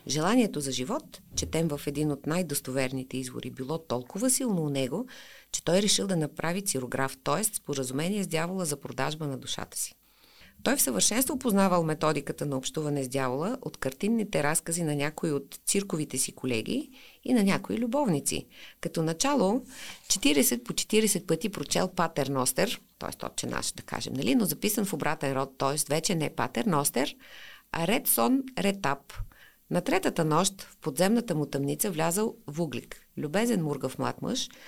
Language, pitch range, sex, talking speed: Bulgarian, 145-200 Hz, female, 165 wpm